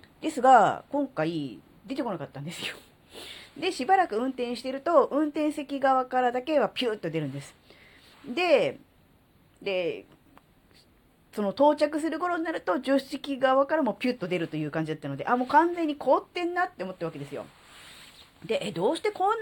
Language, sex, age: Japanese, female, 40-59